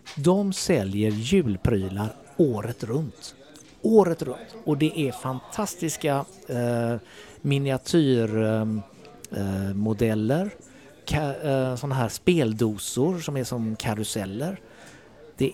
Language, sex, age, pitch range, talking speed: Swedish, male, 50-69, 110-145 Hz, 95 wpm